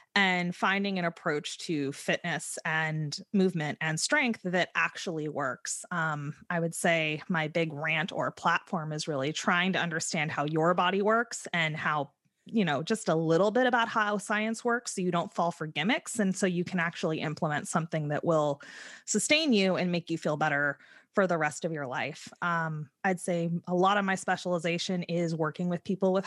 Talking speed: 190 wpm